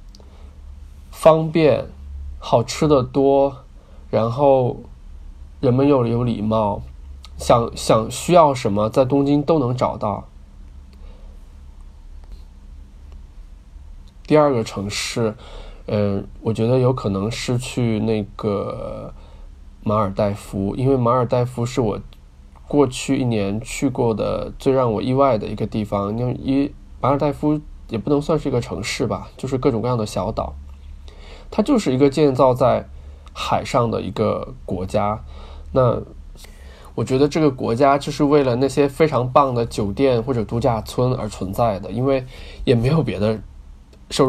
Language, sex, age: Chinese, male, 20-39